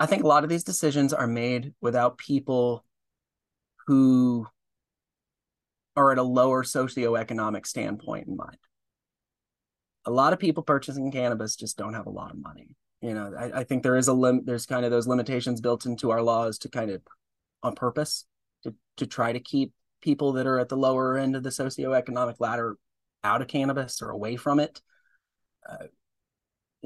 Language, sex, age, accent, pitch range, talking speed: English, male, 30-49, American, 120-140 Hz, 175 wpm